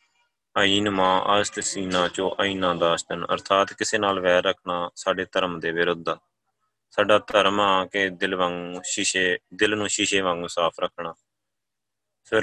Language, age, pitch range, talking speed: Punjabi, 20-39, 90-105 Hz, 145 wpm